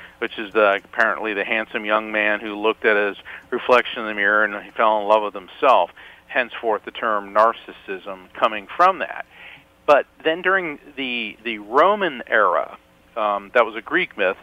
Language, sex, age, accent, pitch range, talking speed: English, male, 50-69, American, 105-130 Hz, 175 wpm